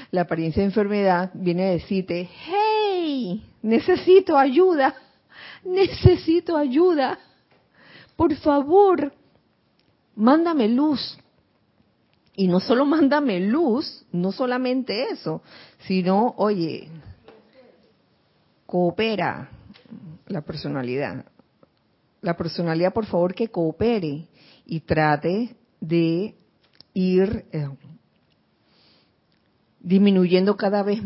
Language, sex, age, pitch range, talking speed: Spanish, female, 40-59, 170-230 Hz, 85 wpm